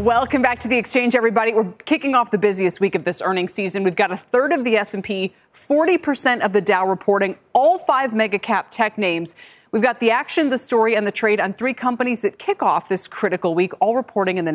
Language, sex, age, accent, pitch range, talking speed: English, female, 30-49, American, 185-255 Hz, 230 wpm